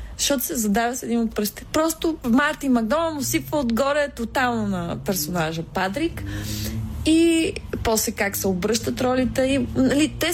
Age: 20-39